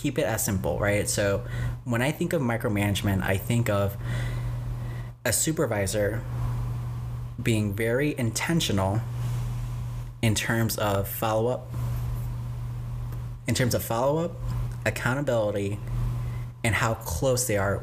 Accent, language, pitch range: American, English, 105-120 Hz